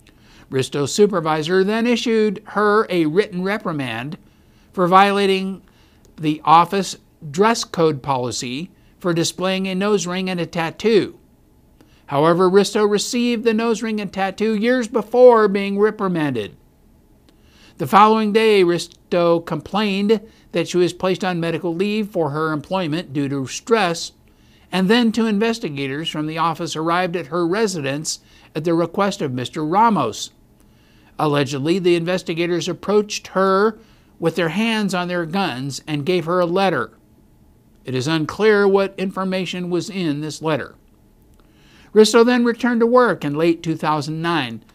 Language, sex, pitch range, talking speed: English, male, 155-205 Hz, 140 wpm